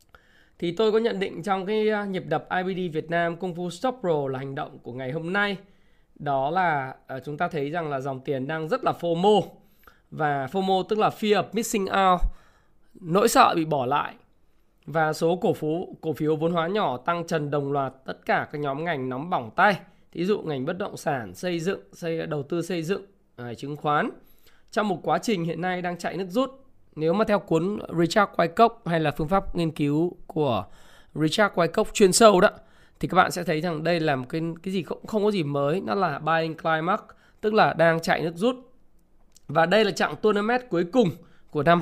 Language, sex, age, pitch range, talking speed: Vietnamese, male, 20-39, 150-195 Hz, 220 wpm